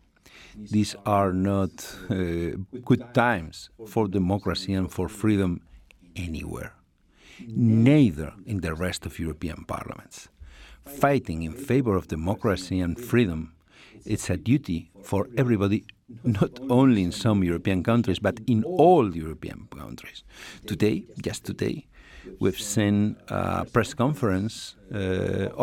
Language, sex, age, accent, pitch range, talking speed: Polish, male, 50-69, Spanish, 90-115 Hz, 120 wpm